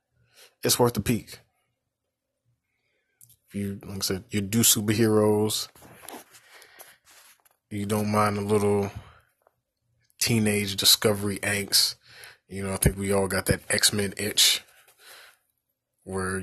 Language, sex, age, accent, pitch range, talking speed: English, male, 20-39, American, 95-115 Hz, 115 wpm